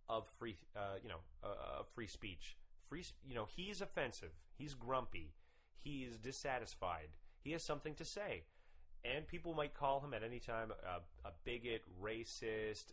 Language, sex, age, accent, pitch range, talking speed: English, male, 30-49, American, 100-155 Hz, 160 wpm